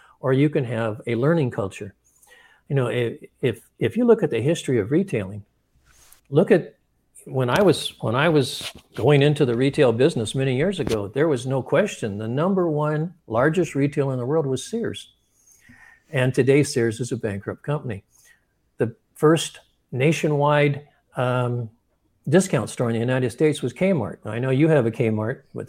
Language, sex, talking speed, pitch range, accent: English, male, 175 wpm, 115-150 Hz, American